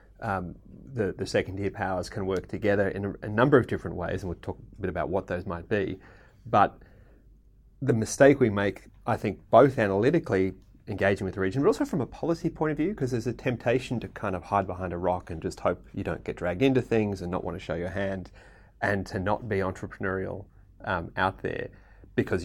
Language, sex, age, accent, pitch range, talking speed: English, male, 30-49, Australian, 90-110 Hz, 220 wpm